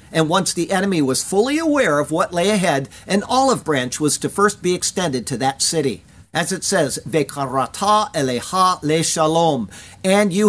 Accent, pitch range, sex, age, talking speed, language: American, 155-210 Hz, male, 50-69, 170 wpm, English